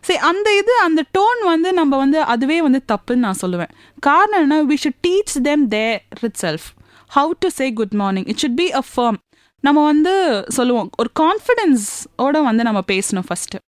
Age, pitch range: 30-49, 215-305 Hz